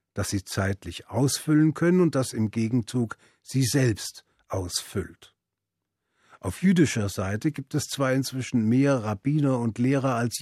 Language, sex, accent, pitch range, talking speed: German, male, German, 105-140 Hz, 140 wpm